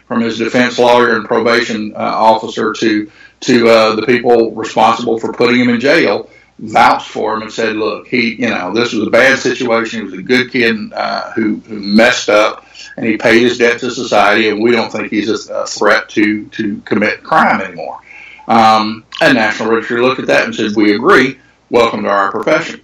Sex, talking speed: male, 205 wpm